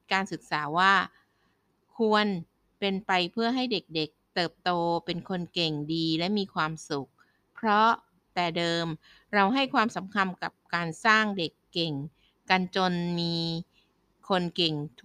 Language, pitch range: Thai, 165-210 Hz